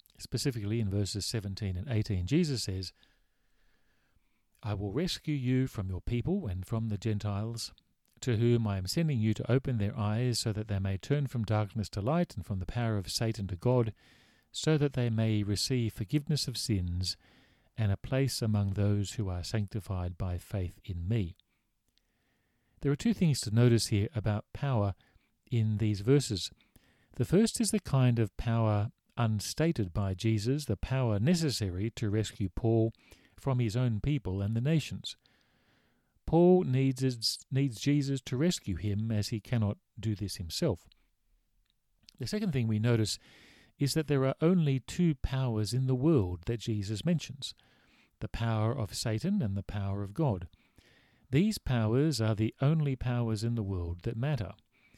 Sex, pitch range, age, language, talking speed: male, 100-130 Hz, 50-69, English, 165 wpm